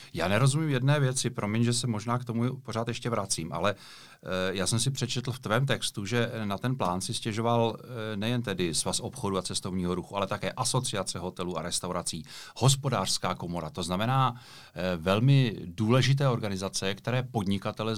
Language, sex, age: Czech, male, 40-59